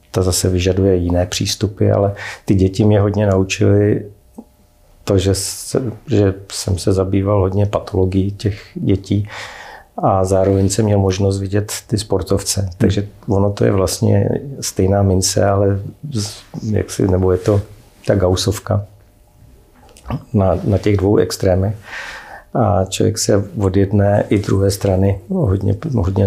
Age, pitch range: 50-69, 95-105 Hz